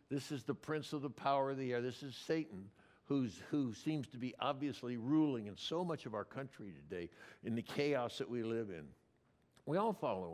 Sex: male